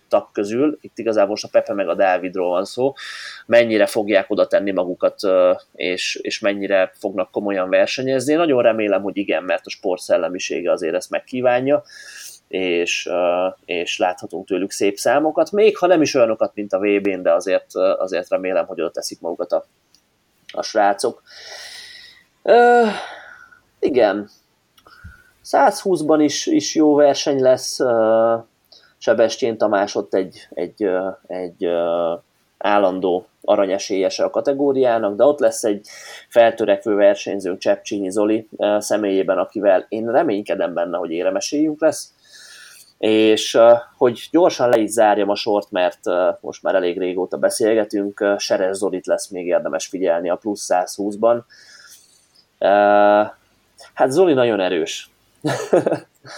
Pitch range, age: 100-155 Hz, 30-49